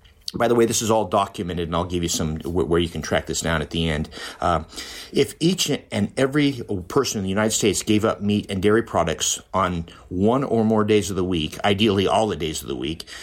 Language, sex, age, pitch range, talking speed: English, male, 50-69, 90-110 Hz, 235 wpm